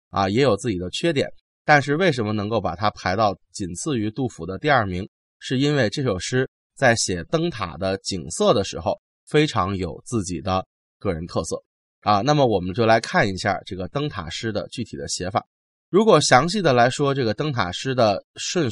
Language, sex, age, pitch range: Chinese, male, 20-39, 95-140 Hz